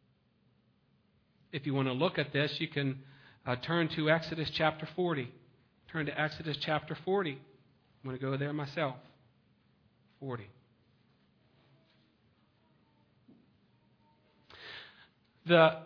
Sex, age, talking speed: male, 40-59, 105 wpm